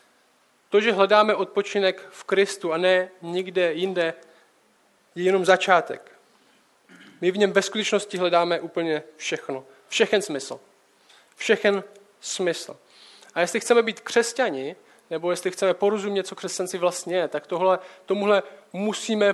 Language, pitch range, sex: Czech, 170-205 Hz, male